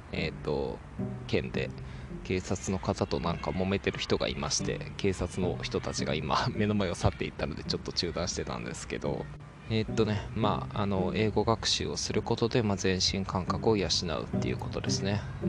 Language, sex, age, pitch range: Japanese, male, 20-39, 90-110 Hz